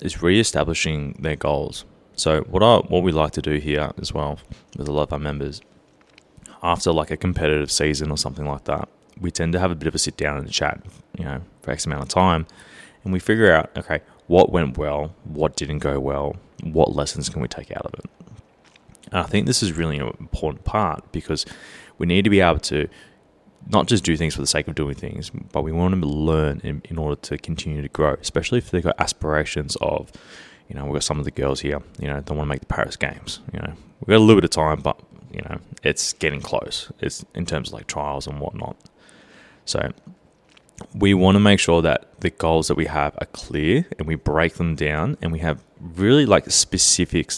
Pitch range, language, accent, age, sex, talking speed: 75-85 Hz, English, Australian, 20-39, male, 225 wpm